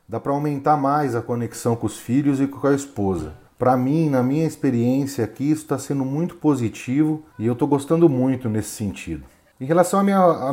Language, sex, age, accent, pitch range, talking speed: Portuguese, male, 40-59, Brazilian, 120-155 Hz, 200 wpm